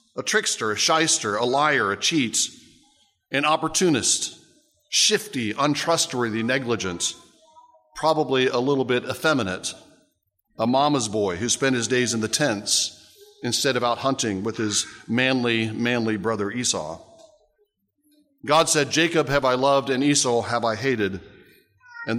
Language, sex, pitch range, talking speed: English, male, 120-170 Hz, 135 wpm